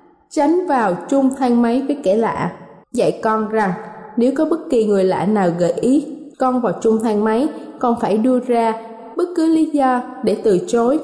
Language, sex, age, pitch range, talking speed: Vietnamese, female, 20-39, 215-280 Hz, 195 wpm